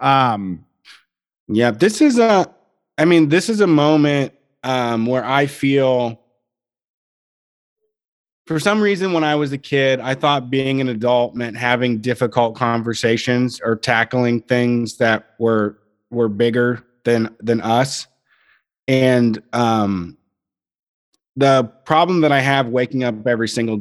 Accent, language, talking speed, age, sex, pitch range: American, English, 135 wpm, 30-49, male, 115-135 Hz